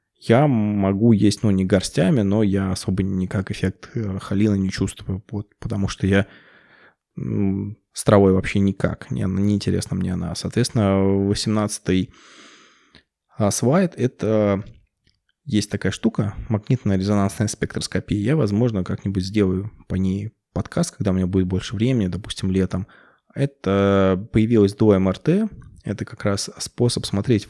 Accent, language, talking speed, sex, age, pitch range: native, Russian, 140 wpm, male, 20-39, 95-110 Hz